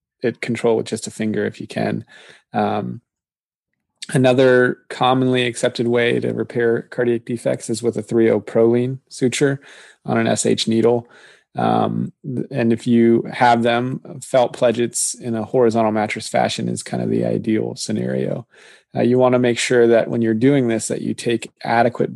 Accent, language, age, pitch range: American, English, 20-39, 105-120 Hz